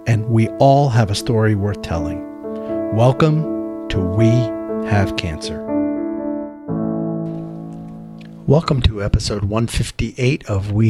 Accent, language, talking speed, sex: American, English, 105 wpm, male